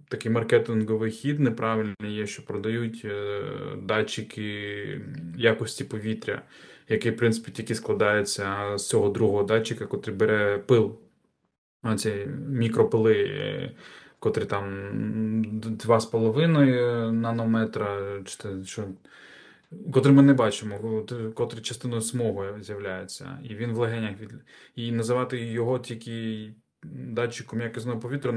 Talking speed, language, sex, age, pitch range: 105 wpm, Ukrainian, male, 20-39, 105-120 Hz